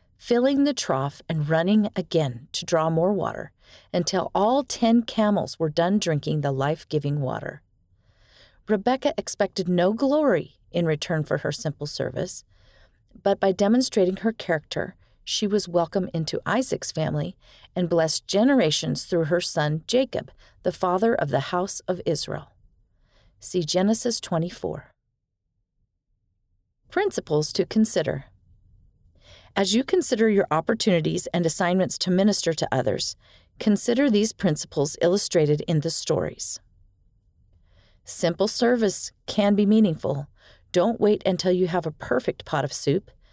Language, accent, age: English, American, 40-59